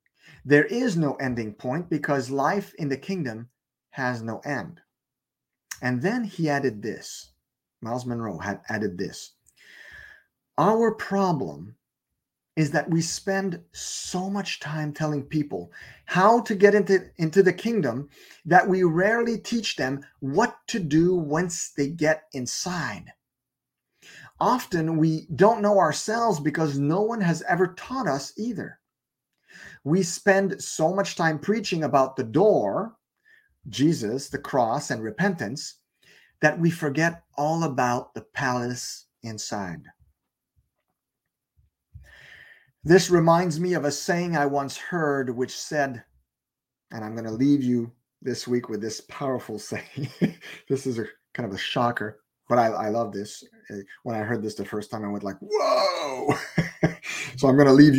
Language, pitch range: English, 125-185 Hz